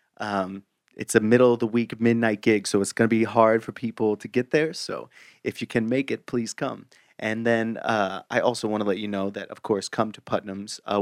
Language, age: English, 30-49